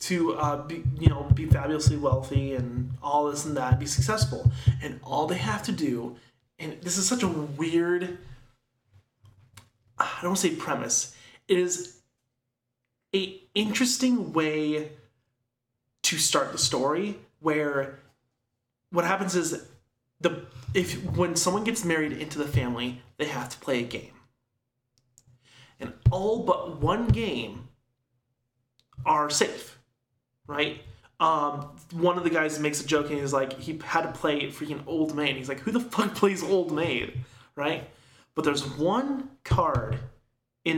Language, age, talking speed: English, 30-49, 145 wpm